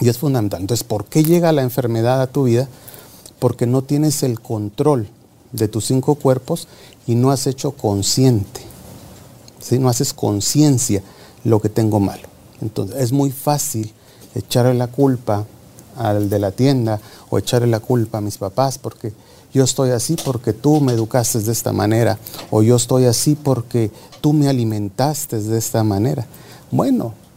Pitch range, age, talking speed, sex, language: 110-130 Hz, 40-59, 160 wpm, male, Spanish